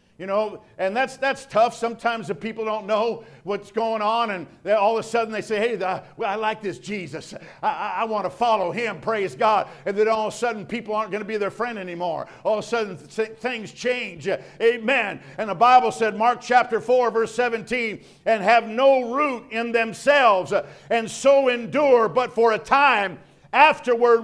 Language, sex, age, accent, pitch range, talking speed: English, male, 50-69, American, 195-255 Hz, 195 wpm